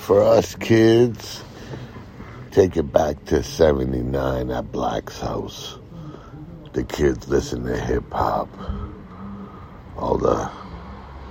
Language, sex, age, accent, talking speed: English, male, 60-79, American, 95 wpm